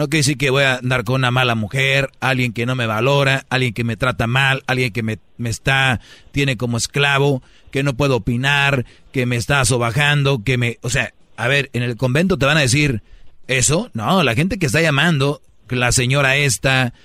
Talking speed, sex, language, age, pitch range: 210 wpm, male, Spanish, 40-59, 120-150 Hz